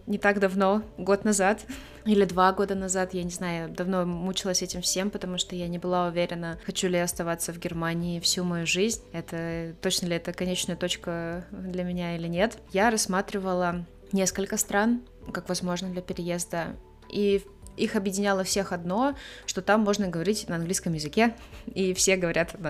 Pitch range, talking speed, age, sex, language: 165-195 Hz, 170 wpm, 20-39, female, Russian